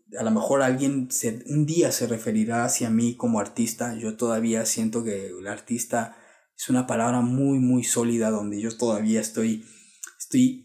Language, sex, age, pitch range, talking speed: English, male, 30-49, 120-155 Hz, 165 wpm